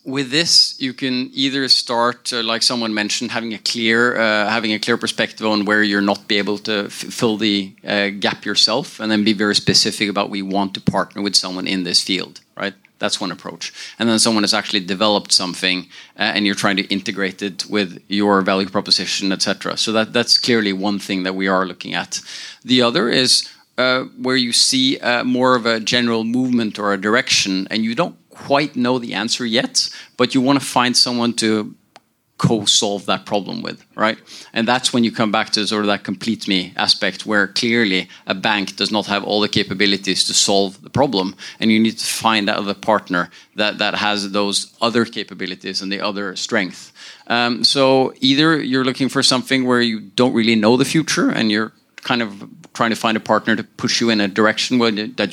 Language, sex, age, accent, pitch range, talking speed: English, male, 30-49, Norwegian, 100-120 Hz, 205 wpm